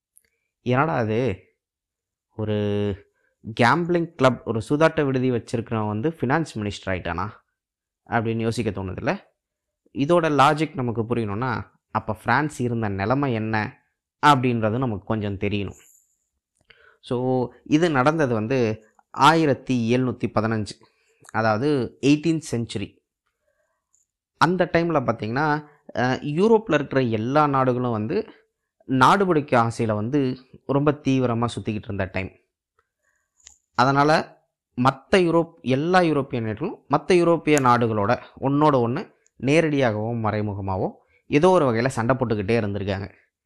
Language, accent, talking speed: Tamil, native, 100 wpm